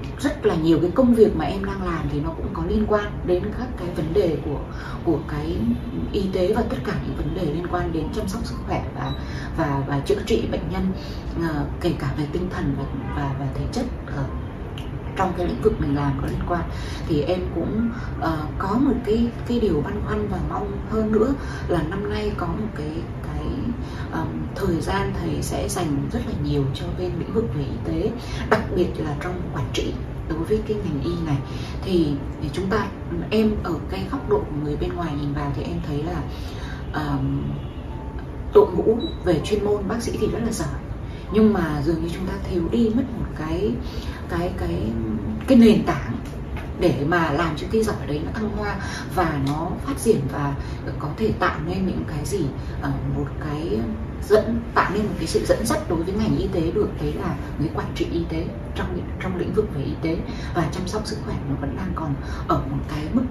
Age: 20-39